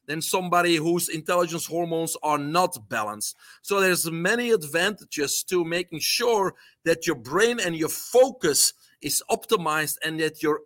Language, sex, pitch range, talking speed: English, male, 155-195 Hz, 145 wpm